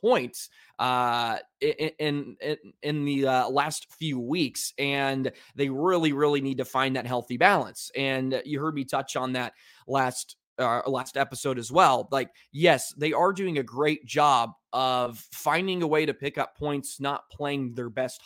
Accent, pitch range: American, 130-155 Hz